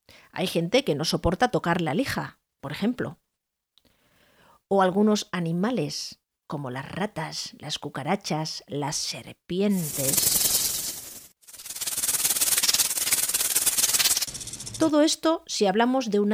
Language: Spanish